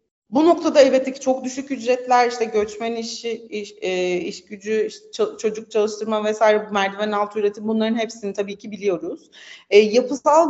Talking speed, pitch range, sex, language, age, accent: 160 wpm, 200-255 Hz, female, Turkish, 30-49, native